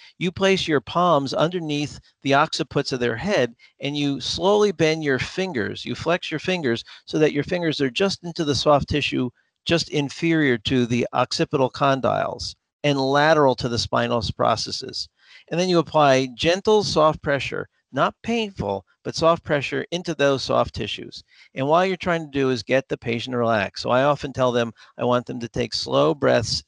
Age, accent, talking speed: 50-69, American, 185 wpm